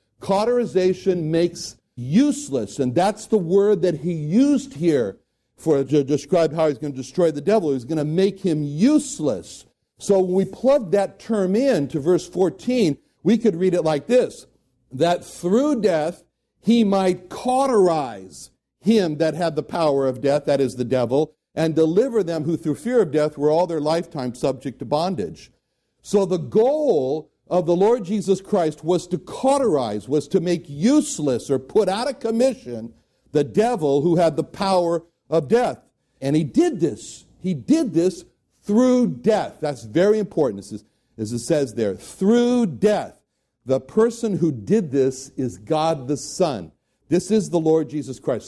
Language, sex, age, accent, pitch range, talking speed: English, male, 60-79, American, 145-210 Hz, 170 wpm